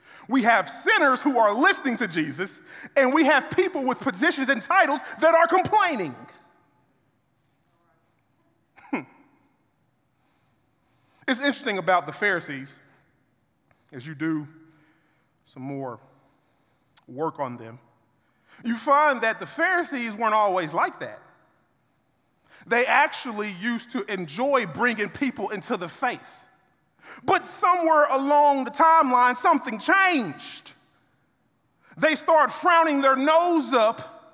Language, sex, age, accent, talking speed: English, male, 30-49, American, 110 wpm